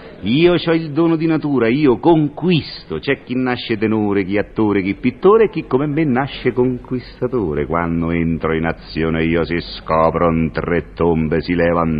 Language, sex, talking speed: Italian, male, 160 wpm